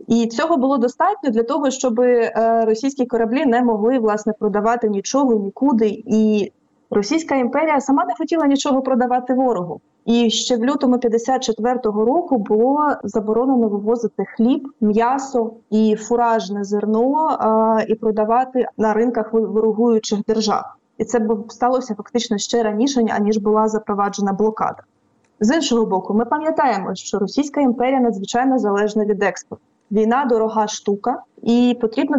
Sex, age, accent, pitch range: female, 20-39, native, 215-250 Hz